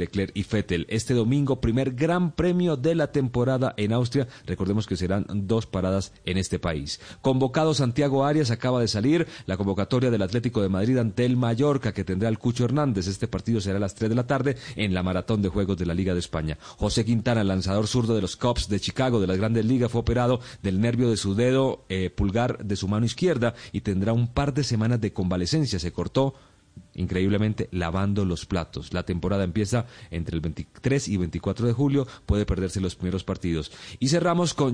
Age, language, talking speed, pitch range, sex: 40-59, Spanish, 205 wpm, 95-130 Hz, male